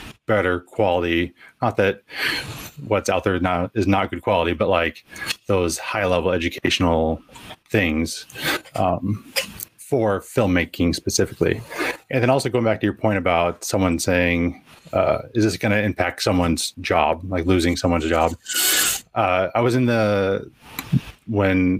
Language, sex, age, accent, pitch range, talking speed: English, male, 30-49, American, 90-110 Hz, 145 wpm